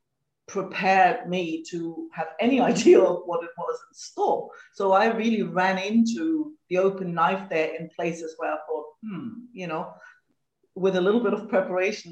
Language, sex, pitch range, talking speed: English, female, 175-230 Hz, 175 wpm